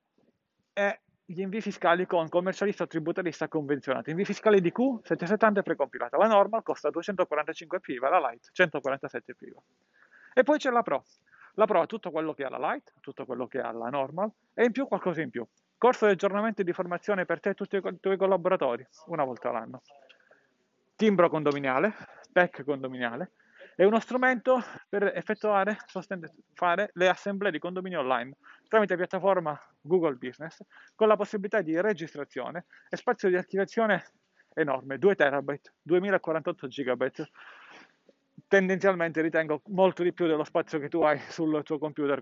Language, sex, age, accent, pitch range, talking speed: Italian, male, 40-59, native, 145-195 Hz, 160 wpm